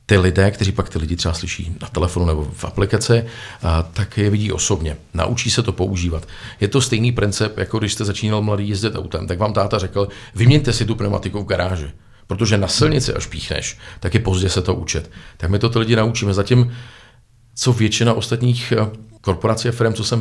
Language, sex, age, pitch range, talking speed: Czech, male, 40-59, 95-120 Hz, 200 wpm